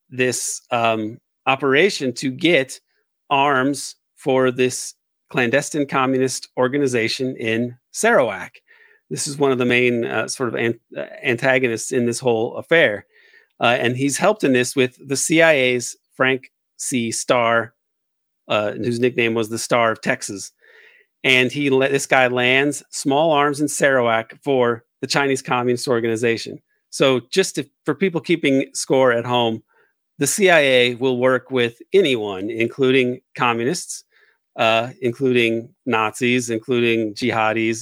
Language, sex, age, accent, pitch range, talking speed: English, male, 40-59, American, 120-140 Hz, 130 wpm